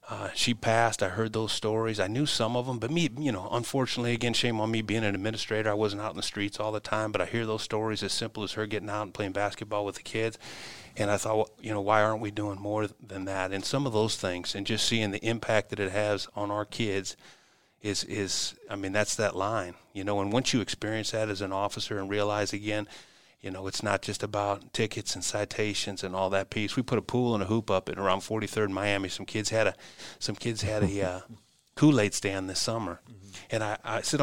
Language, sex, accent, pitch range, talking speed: English, male, American, 100-110 Hz, 250 wpm